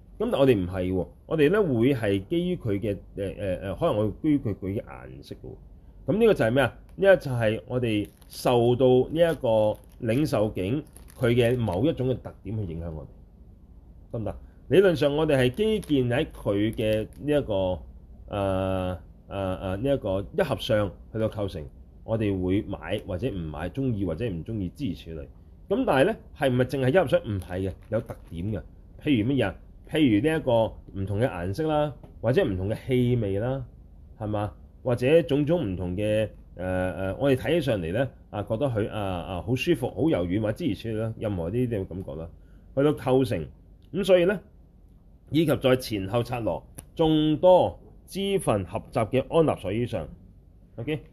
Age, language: 30-49, Chinese